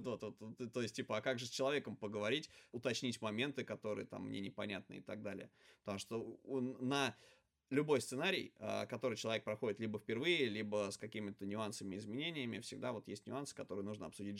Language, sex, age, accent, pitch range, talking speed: Russian, male, 20-39, native, 105-130 Hz, 180 wpm